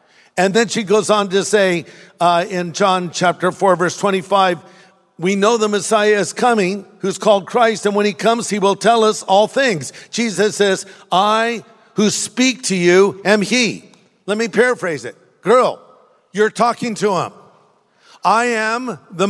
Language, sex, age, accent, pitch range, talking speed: English, male, 50-69, American, 170-215 Hz, 170 wpm